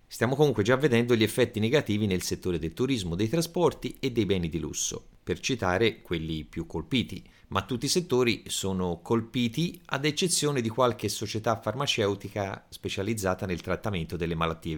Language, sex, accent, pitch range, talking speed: Italian, male, native, 90-125 Hz, 160 wpm